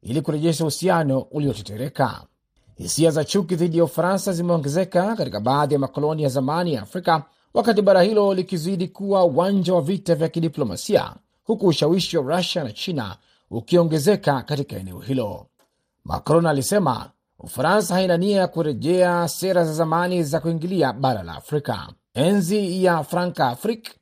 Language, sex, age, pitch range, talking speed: Swahili, male, 40-59, 150-190 Hz, 140 wpm